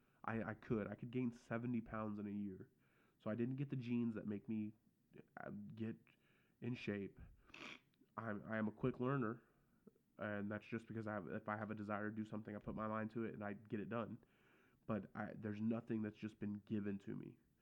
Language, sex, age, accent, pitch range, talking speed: English, male, 20-39, American, 105-120 Hz, 220 wpm